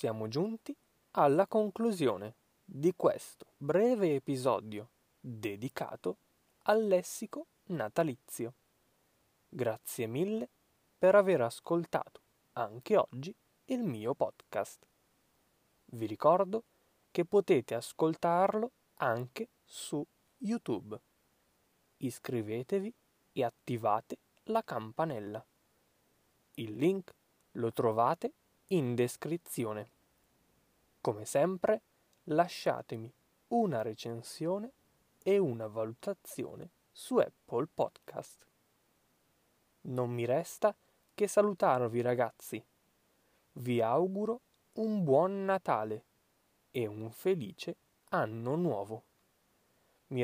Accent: native